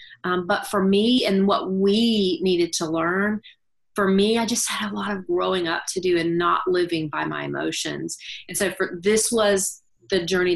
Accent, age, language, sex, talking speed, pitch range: American, 30-49, English, female, 200 wpm, 170-215 Hz